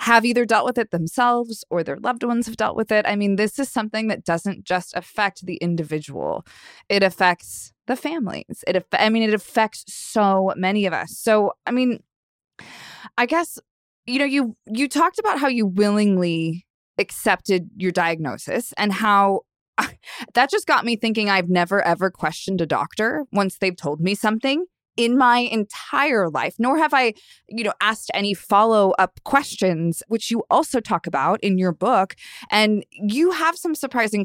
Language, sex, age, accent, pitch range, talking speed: English, female, 20-39, American, 180-230 Hz, 175 wpm